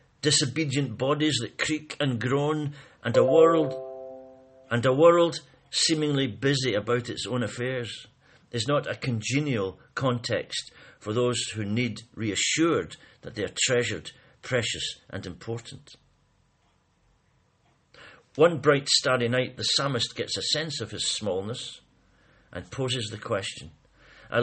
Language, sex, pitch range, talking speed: English, male, 120-145 Hz, 130 wpm